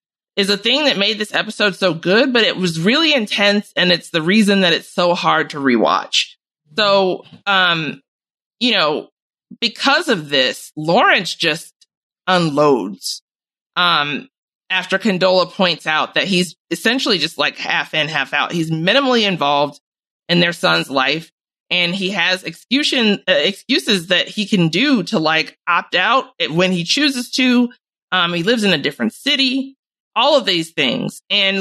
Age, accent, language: 30-49, American, English